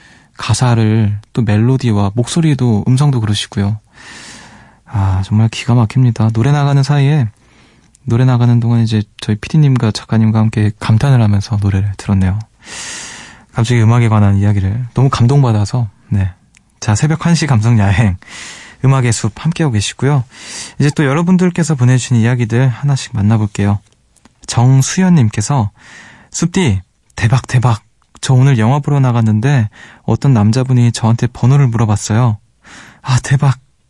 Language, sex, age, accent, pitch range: Korean, male, 20-39, native, 110-140 Hz